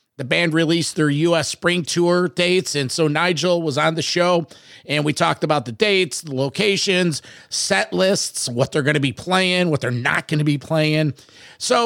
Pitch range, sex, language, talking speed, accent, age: 155-205 Hz, male, English, 195 wpm, American, 50-69